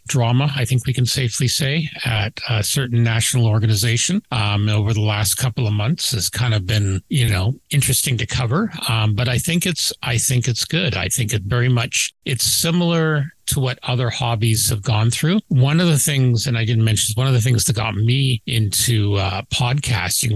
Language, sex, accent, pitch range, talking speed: English, male, American, 105-130 Hz, 205 wpm